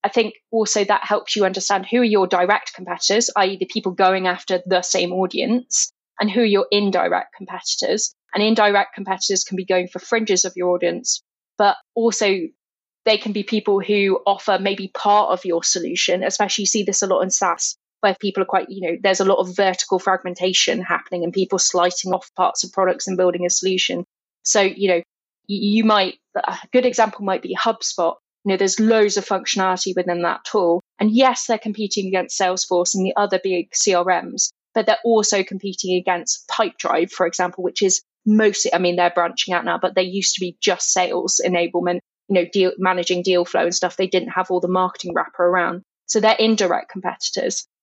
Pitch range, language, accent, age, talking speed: 180-210 Hz, English, British, 20-39, 195 wpm